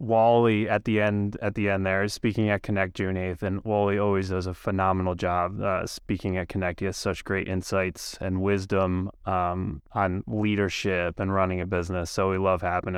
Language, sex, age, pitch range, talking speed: English, male, 20-39, 95-110 Hz, 200 wpm